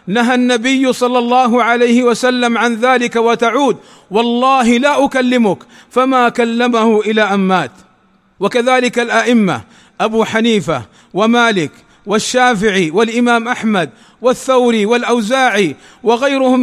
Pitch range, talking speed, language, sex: 215-250 Hz, 100 wpm, Arabic, male